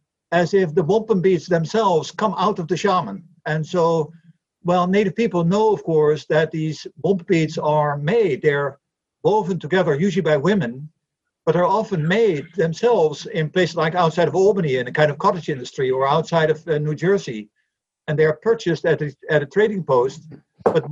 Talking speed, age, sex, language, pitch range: 180 wpm, 60-79, male, English, 150-185 Hz